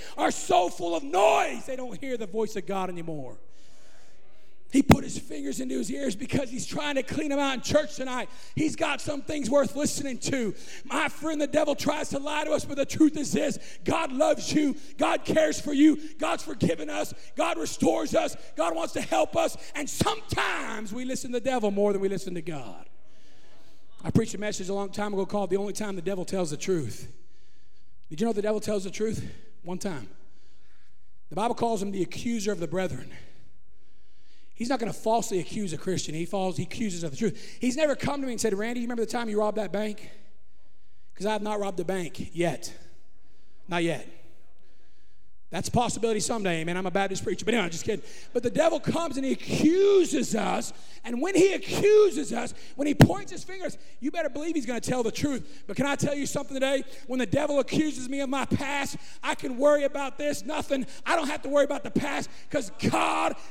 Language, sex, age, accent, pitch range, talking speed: English, male, 40-59, American, 195-290 Hz, 215 wpm